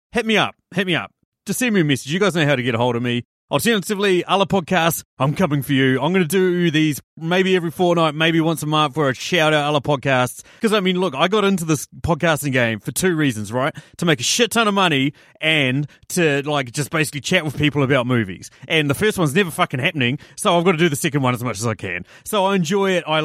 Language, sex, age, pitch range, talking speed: English, male, 30-49, 130-170 Hz, 265 wpm